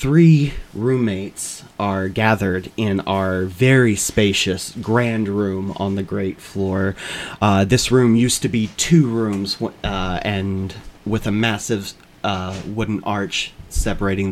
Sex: male